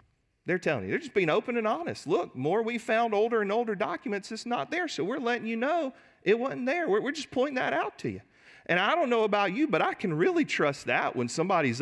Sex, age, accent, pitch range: male, 40-59, American, 160-235 Hz